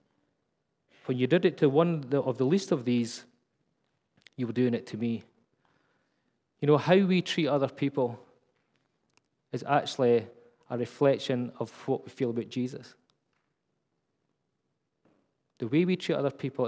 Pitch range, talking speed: 120-150 Hz, 145 wpm